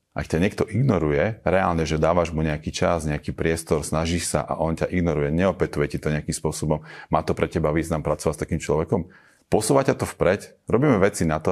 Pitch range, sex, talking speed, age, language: 80-90 Hz, male, 205 wpm, 30-49, Slovak